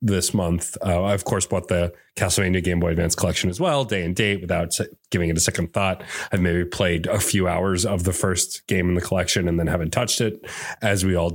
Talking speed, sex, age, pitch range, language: 240 wpm, male, 30-49, 90-110 Hz, English